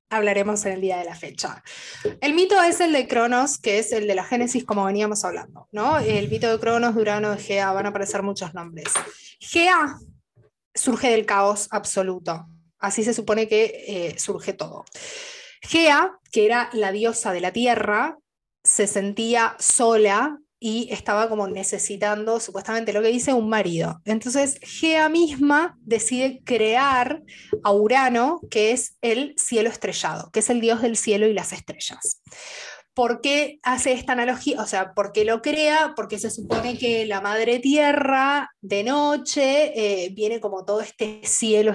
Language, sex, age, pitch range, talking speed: Spanish, female, 20-39, 200-260 Hz, 165 wpm